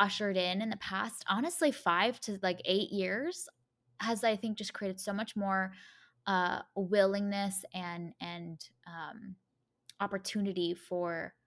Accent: American